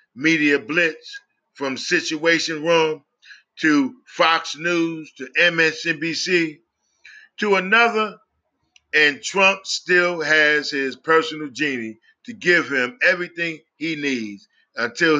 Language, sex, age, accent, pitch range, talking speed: English, male, 40-59, American, 140-180 Hz, 105 wpm